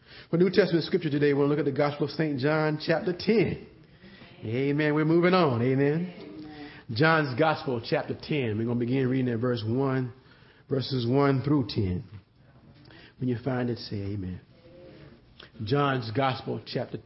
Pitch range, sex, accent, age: 130-200 Hz, male, American, 40-59